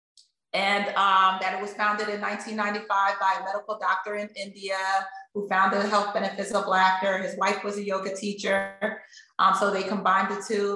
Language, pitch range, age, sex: English, 200-260 Hz, 30-49, female